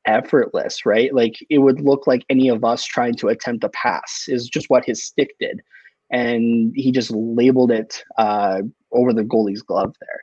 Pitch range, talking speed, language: 110-135 Hz, 190 wpm, English